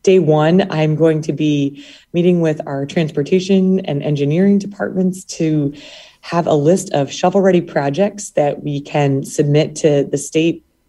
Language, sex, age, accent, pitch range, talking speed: English, female, 20-39, American, 140-180 Hz, 150 wpm